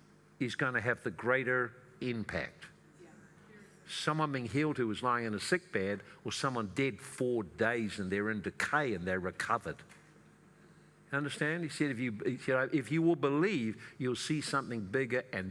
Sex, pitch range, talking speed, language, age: male, 120-155 Hz, 170 wpm, English, 60-79